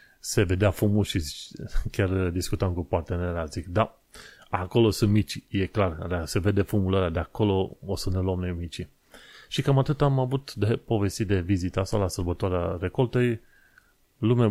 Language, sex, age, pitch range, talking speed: Romanian, male, 30-49, 90-115 Hz, 170 wpm